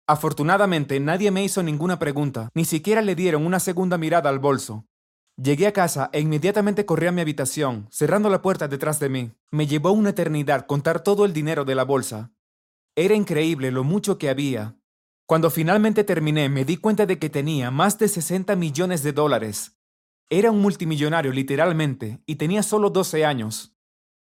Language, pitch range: Spanish, 140-185 Hz